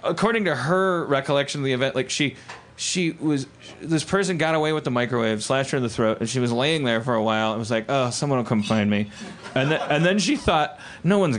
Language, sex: English, male